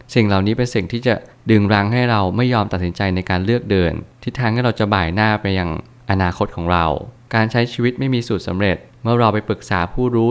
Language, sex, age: Thai, male, 20-39